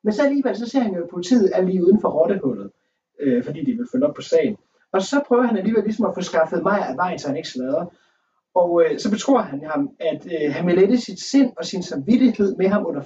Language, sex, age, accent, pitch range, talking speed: Danish, male, 30-49, native, 165-225 Hz, 260 wpm